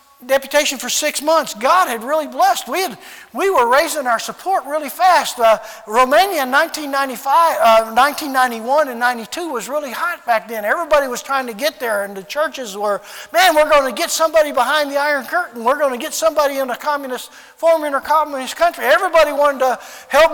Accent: American